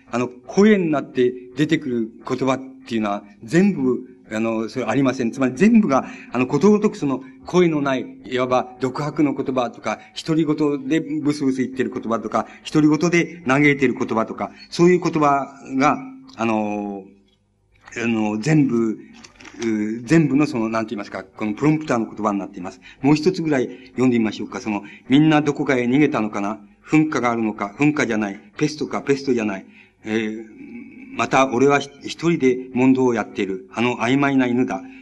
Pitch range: 115-145 Hz